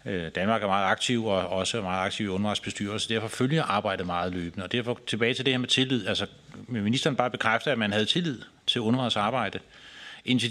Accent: native